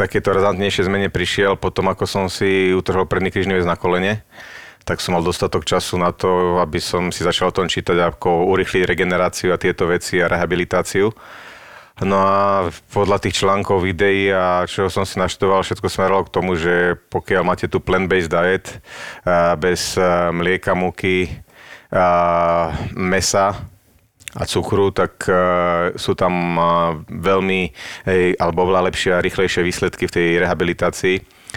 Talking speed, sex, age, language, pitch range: 150 wpm, male, 30-49, Slovak, 90-100 Hz